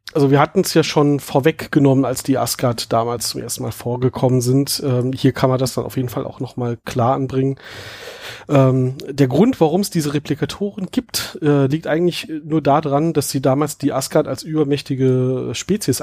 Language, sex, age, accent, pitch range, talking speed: German, male, 40-59, German, 135-165 Hz, 185 wpm